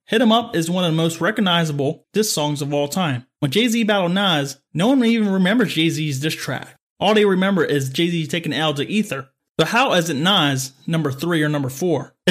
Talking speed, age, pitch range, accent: 210 wpm, 30-49, 145-195 Hz, American